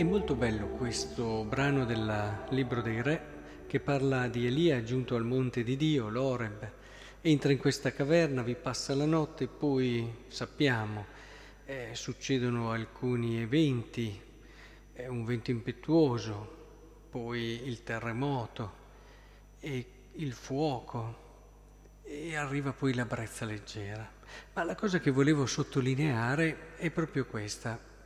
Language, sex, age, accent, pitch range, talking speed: Italian, male, 40-59, native, 115-145 Hz, 125 wpm